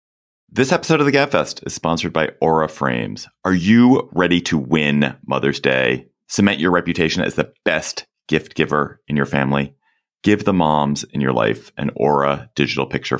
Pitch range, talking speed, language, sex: 65-90 Hz, 175 wpm, English, male